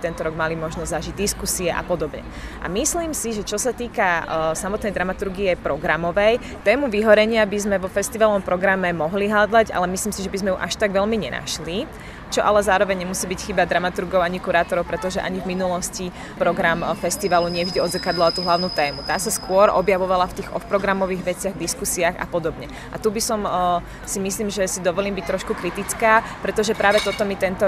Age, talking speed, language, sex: 20-39, 190 wpm, Czech, female